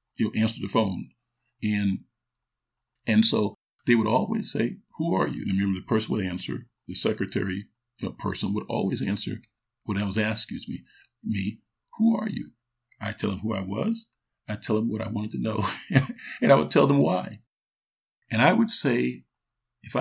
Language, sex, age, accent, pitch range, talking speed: English, male, 50-69, American, 100-120 Hz, 195 wpm